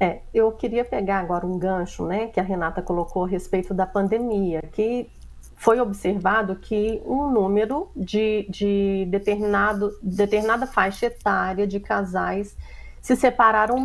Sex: female